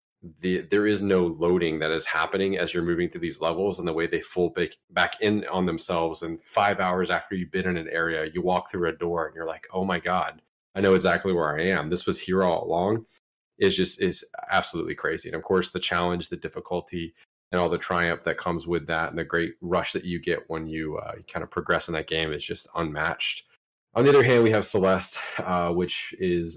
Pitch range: 85-95 Hz